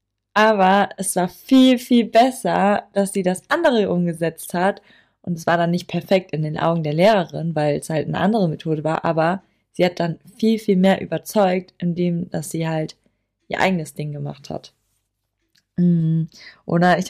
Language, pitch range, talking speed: German, 170-205 Hz, 170 wpm